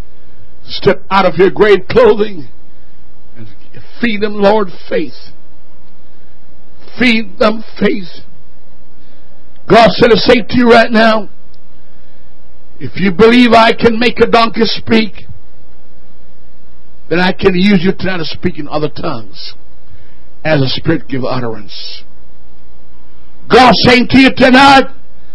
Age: 60-79